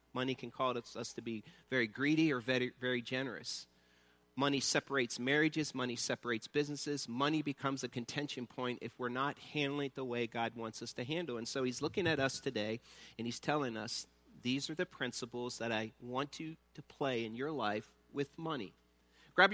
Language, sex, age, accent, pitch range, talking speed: English, male, 40-59, American, 120-150 Hz, 190 wpm